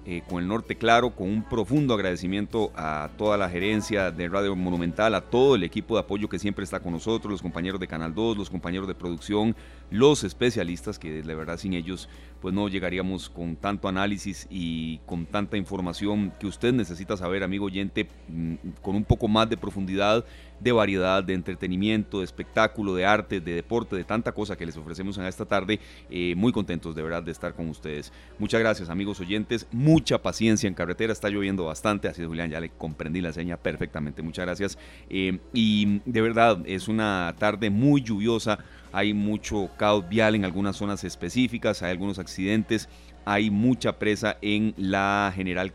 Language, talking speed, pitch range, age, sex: Spanish, 185 wpm, 90-105 Hz, 30-49, male